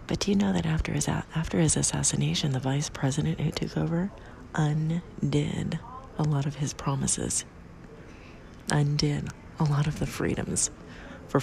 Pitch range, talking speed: 140-170 Hz, 150 wpm